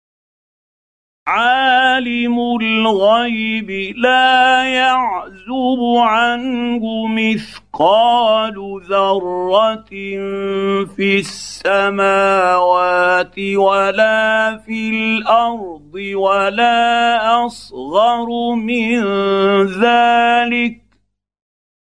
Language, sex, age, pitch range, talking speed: Arabic, male, 50-69, 195-240 Hz, 45 wpm